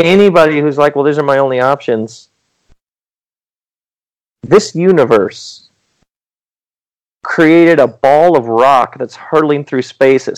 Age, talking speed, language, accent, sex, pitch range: 40-59, 120 wpm, English, American, male, 115-145 Hz